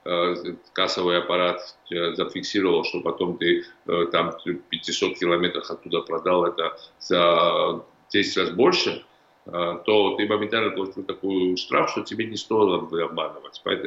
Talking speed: 120 wpm